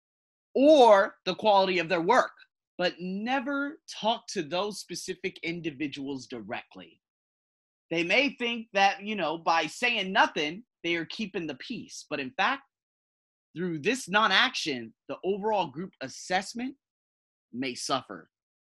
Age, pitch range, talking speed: 30-49, 155-210 Hz, 130 wpm